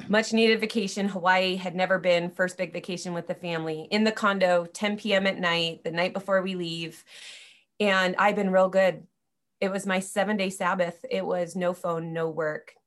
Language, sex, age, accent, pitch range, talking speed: English, female, 30-49, American, 175-215 Hz, 195 wpm